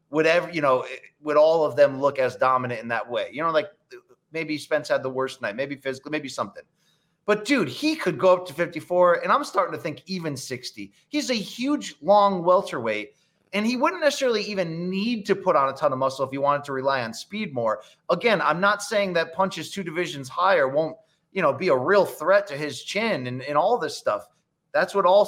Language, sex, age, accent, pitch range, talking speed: English, male, 30-49, American, 150-195 Hz, 225 wpm